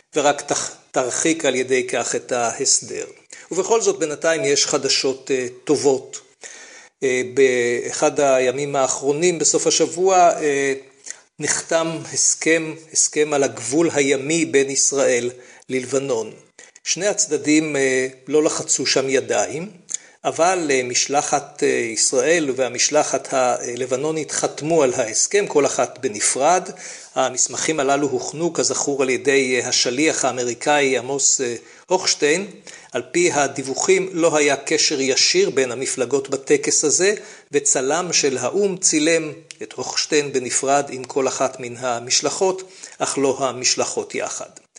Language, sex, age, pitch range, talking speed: Hebrew, male, 50-69, 135-190 Hz, 100 wpm